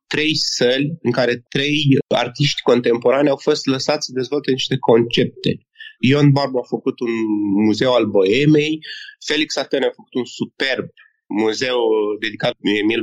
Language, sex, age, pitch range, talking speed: Romanian, male, 30-49, 130-175 Hz, 145 wpm